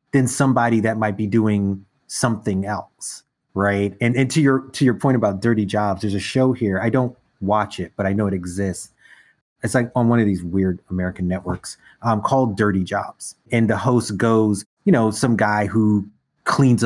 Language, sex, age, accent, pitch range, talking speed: English, male, 30-49, American, 105-135 Hz, 195 wpm